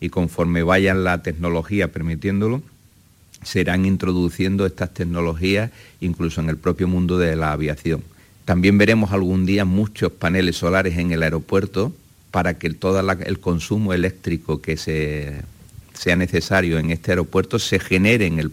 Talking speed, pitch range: 145 wpm, 80-95 Hz